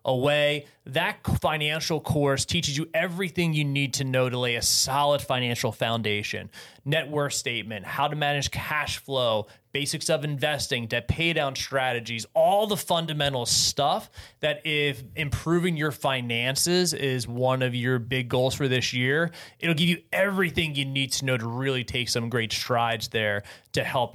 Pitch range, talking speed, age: 125-160 Hz, 165 wpm, 30-49